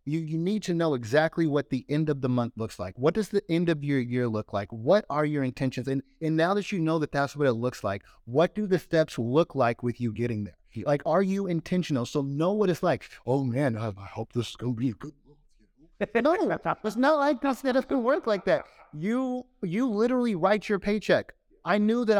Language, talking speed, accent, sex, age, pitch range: English, 250 wpm, American, male, 30-49, 130-190 Hz